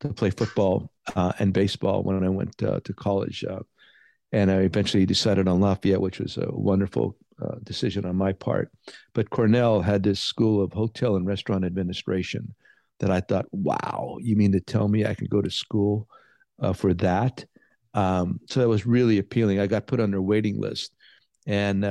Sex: male